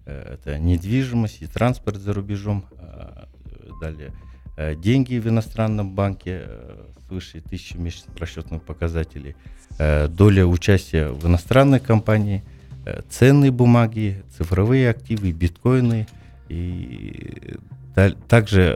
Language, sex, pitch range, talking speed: Russian, male, 85-110 Hz, 95 wpm